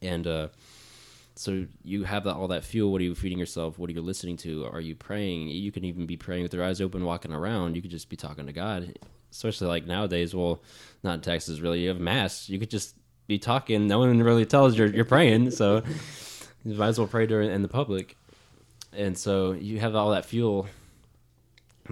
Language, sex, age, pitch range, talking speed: English, male, 10-29, 80-105 Hz, 220 wpm